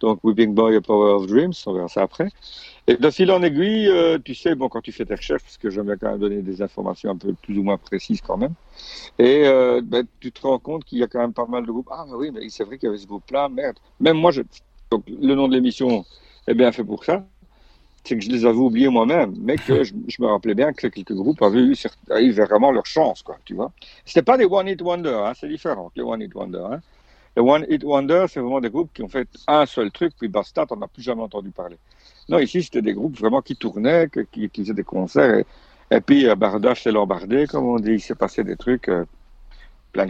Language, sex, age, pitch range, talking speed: French, male, 50-69, 105-145 Hz, 265 wpm